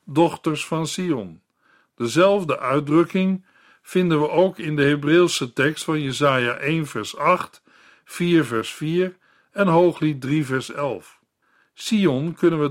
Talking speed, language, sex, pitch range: 130 wpm, Dutch, male, 130-170 Hz